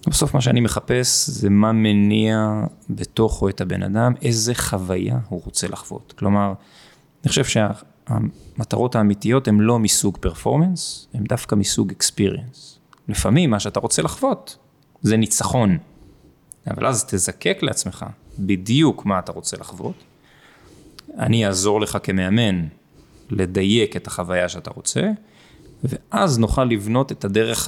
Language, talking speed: Hebrew, 130 wpm